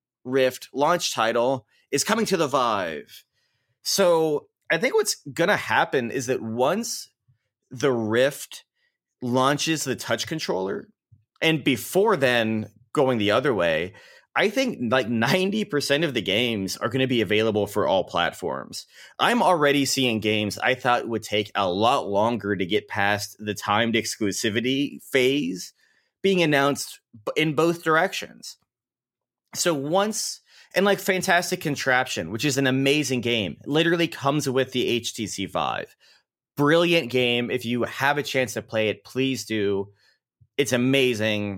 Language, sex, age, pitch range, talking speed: English, male, 30-49, 110-150 Hz, 145 wpm